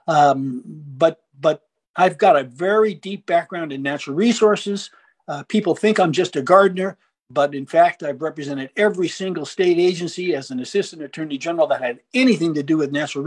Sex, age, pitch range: male, 60-79, 155-210 Hz